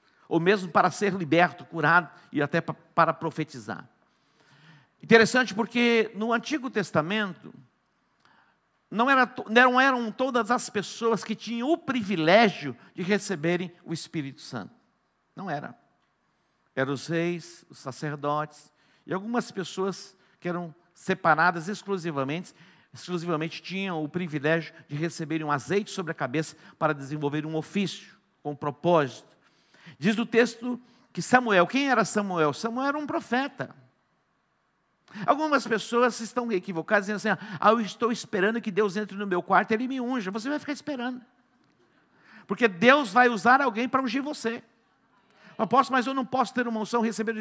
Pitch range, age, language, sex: 170-235 Hz, 50-69, Portuguese, male